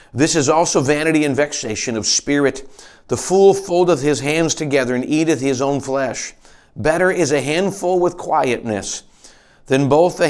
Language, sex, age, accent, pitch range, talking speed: English, male, 40-59, American, 130-165 Hz, 165 wpm